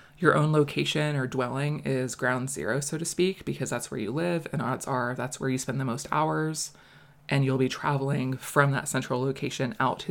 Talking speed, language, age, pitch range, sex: 215 wpm, English, 20-39, 130-150 Hz, female